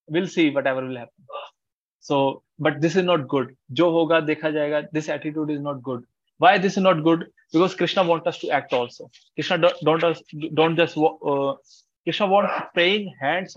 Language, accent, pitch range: English, Indian, 145-175 Hz